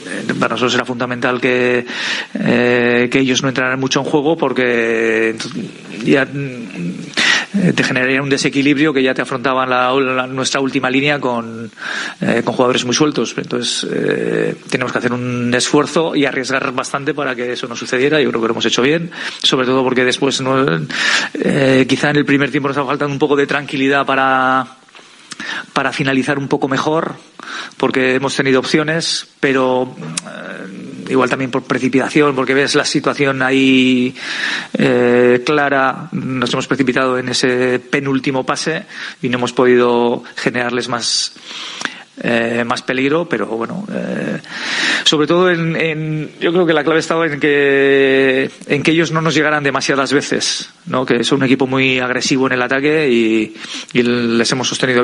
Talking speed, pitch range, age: 165 wpm, 125-140 Hz, 30-49